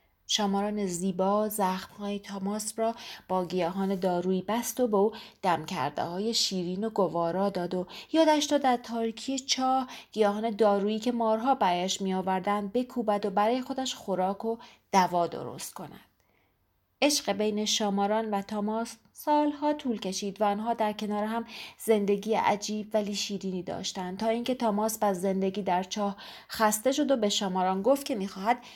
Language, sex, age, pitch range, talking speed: Persian, female, 30-49, 195-245 Hz, 145 wpm